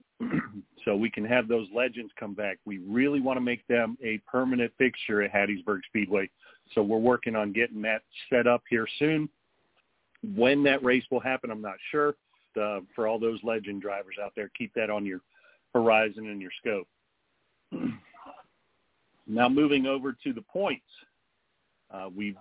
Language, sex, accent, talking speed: English, male, American, 165 wpm